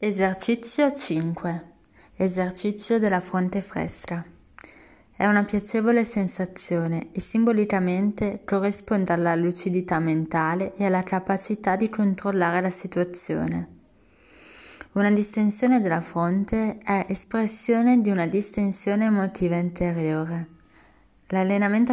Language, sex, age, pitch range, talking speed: Italian, female, 20-39, 175-205 Hz, 95 wpm